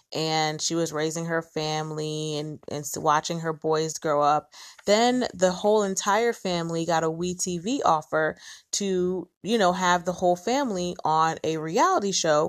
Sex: female